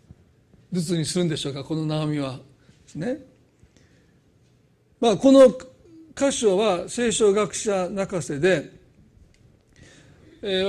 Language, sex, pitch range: Japanese, male, 165-220 Hz